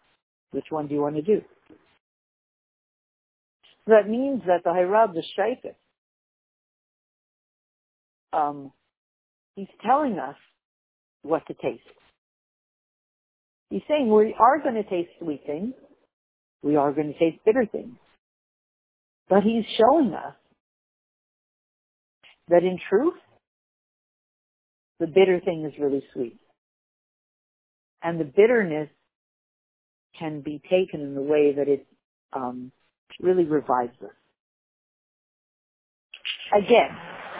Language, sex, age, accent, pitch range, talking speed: English, female, 50-69, American, 150-210 Hz, 105 wpm